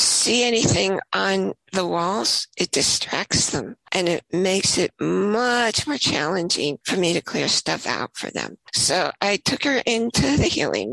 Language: English